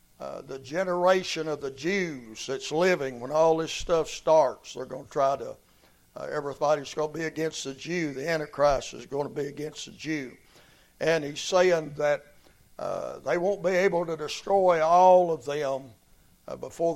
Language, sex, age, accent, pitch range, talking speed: English, male, 60-79, American, 140-175 Hz, 180 wpm